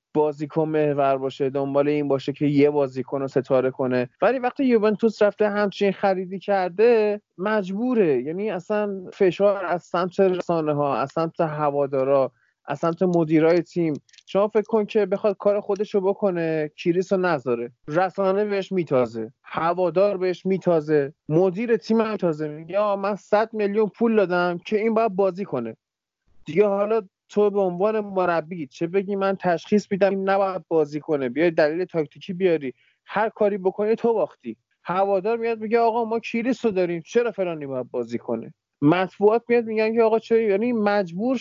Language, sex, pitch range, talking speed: Persian, male, 160-215 Hz, 155 wpm